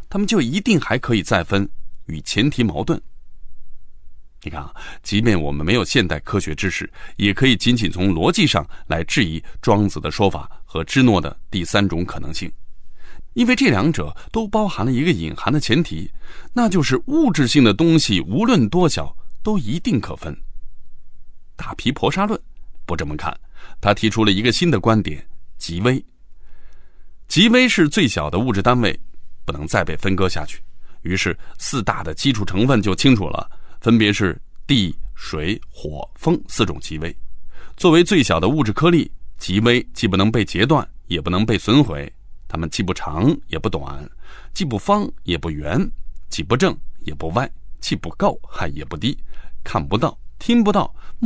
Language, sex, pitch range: Chinese, male, 85-145 Hz